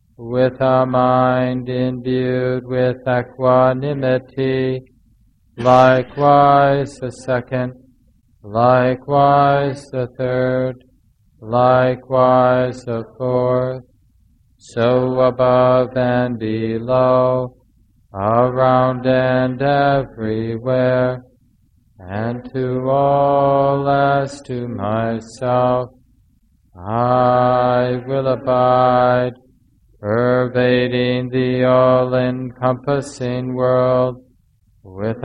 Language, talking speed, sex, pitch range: English, 60 wpm, male, 115-130 Hz